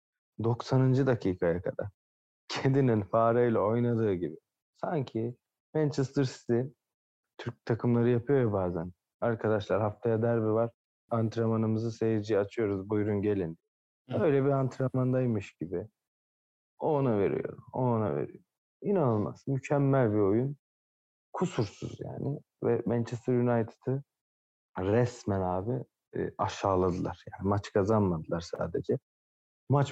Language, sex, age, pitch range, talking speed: Turkish, male, 40-59, 95-120 Hz, 100 wpm